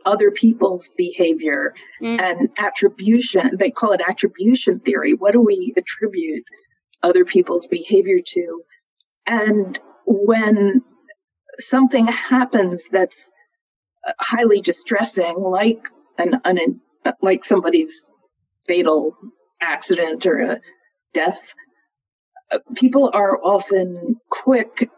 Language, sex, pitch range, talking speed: English, female, 185-305 Hz, 95 wpm